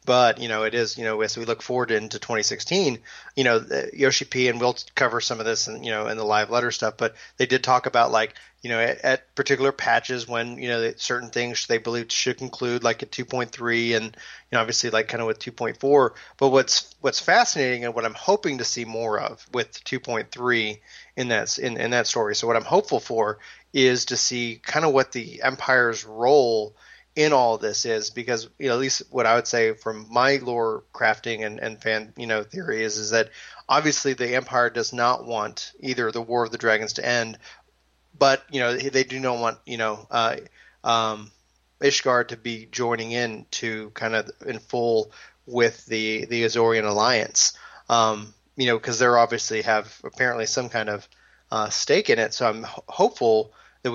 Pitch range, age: 110-125 Hz, 30-49